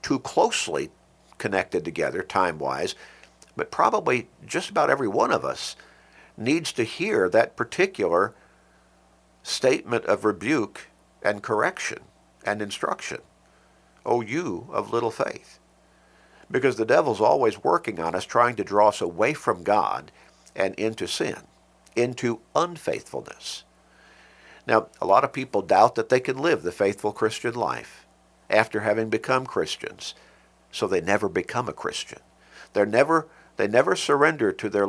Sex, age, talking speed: male, 50-69, 140 wpm